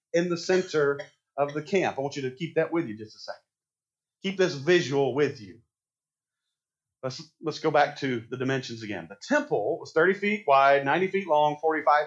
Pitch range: 140-180 Hz